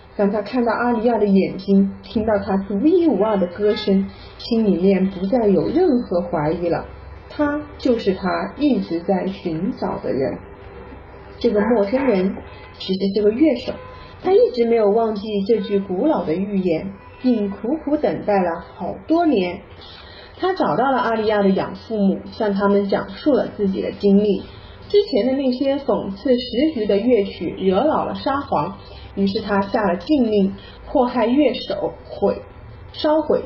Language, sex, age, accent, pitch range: Chinese, female, 30-49, native, 195-265 Hz